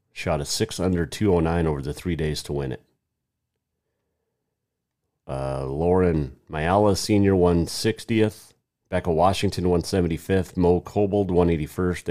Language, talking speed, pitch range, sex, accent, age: English, 110 wpm, 85-110 Hz, male, American, 40-59